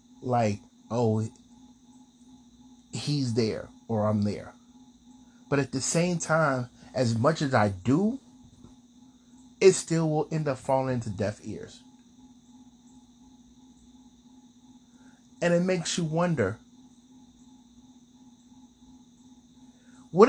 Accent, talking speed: American, 95 wpm